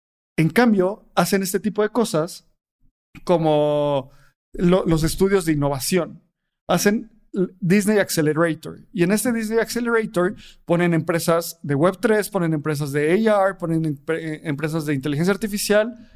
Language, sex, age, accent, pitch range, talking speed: Spanish, male, 40-59, Mexican, 155-195 Hz, 130 wpm